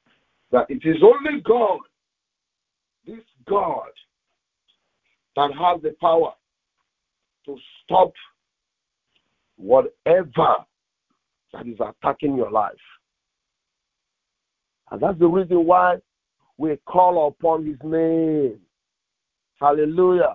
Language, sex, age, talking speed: English, male, 50-69, 90 wpm